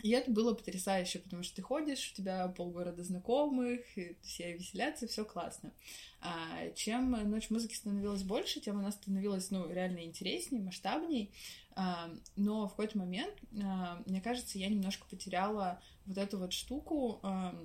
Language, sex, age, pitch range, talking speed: Russian, female, 20-39, 180-220 Hz, 145 wpm